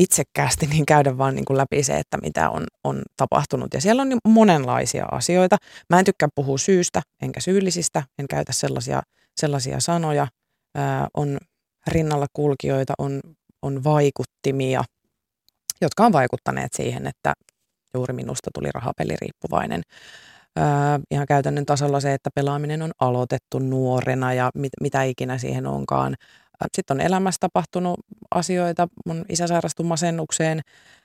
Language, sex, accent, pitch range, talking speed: Finnish, female, native, 135-160 Hz, 140 wpm